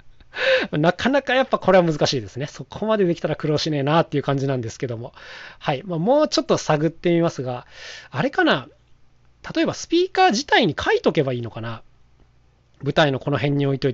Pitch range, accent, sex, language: 130-195 Hz, native, male, Japanese